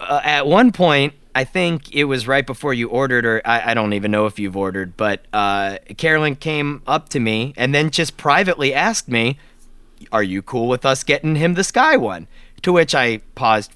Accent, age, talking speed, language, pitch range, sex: American, 30-49, 210 wpm, English, 115-180 Hz, male